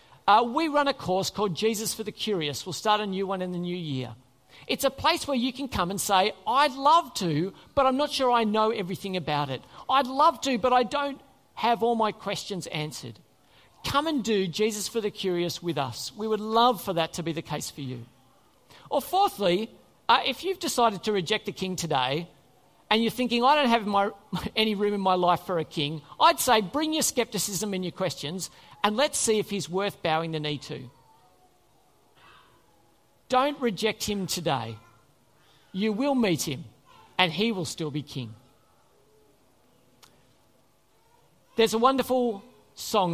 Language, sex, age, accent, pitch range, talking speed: English, male, 50-69, Australian, 165-240 Hz, 185 wpm